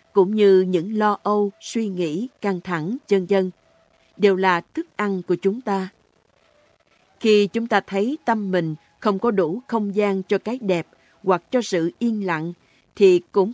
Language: Vietnamese